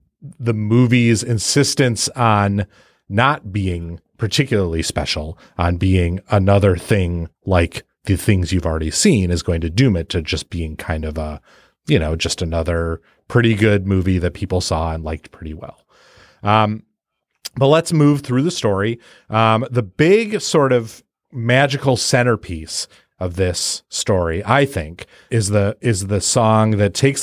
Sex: male